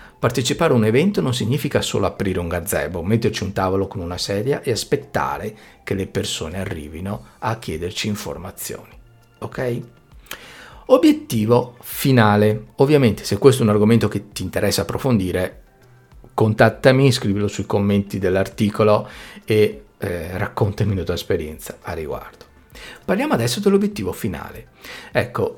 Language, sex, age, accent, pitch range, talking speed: Italian, male, 50-69, native, 100-125 Hz, 130 wpm